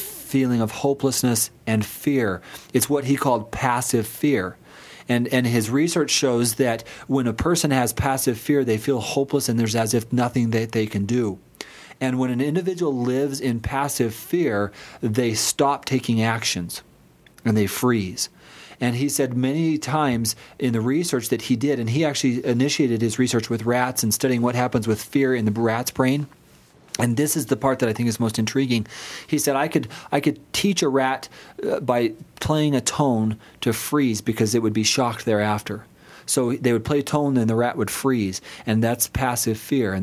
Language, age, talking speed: English, 40-59, 190 wpm